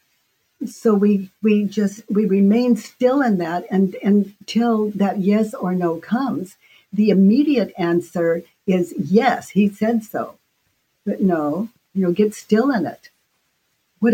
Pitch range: 175-220 Hz